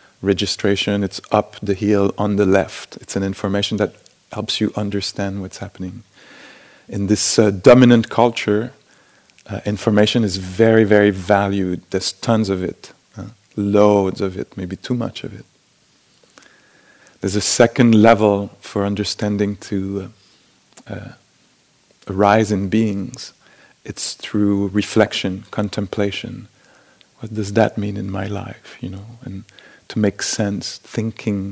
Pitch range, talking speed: 100-110 Hz, 135 wpm